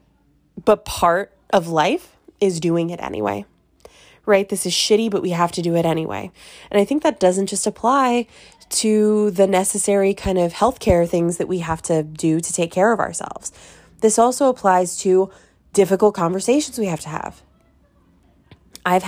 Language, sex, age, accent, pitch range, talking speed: English, female, 20-39, American, 175-220 Hz, 170 wpm